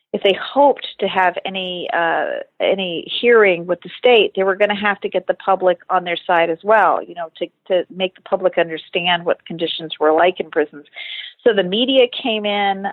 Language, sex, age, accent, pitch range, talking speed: English, female, 40-59, American, 175-215 Hz, 210 wpm